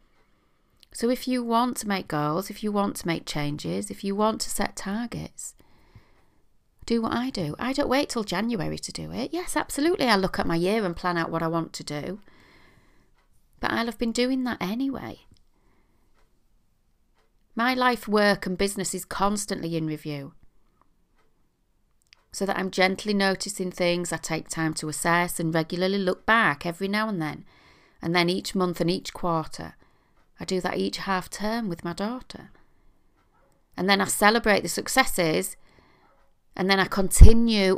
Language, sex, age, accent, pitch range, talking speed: English, female, 30-49, British, 170-210 Hz, 170 wpm